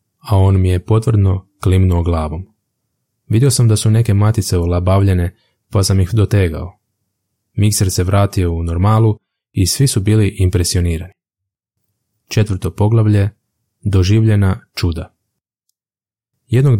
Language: Croatian